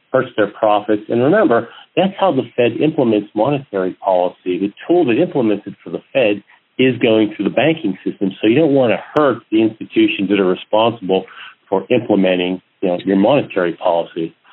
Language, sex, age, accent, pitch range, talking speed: English, male, 50-69, American, 100-125 Hz, 175 wpm